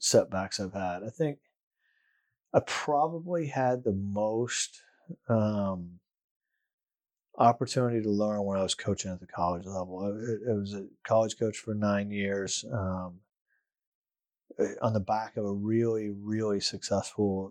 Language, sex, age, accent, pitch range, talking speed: English, male, 30-49, American, 95-110 Hz, 135 wpm